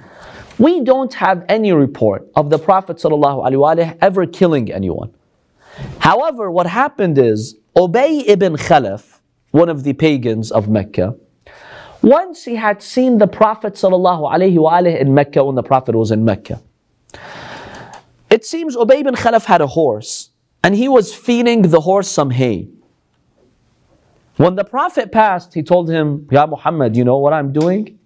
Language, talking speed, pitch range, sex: English, 150 wpm, 120-190 Hz, male